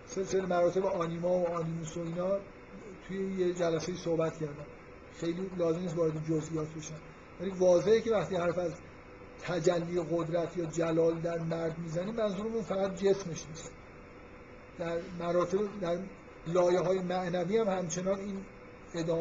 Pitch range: 165-190 Hz